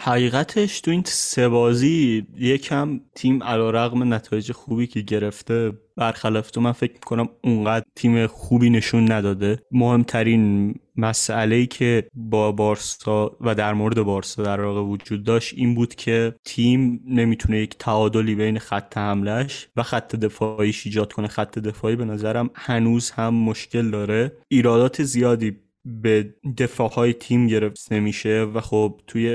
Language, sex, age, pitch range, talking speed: Persian, male, 20-39, 110-120 Hz, 140 wpm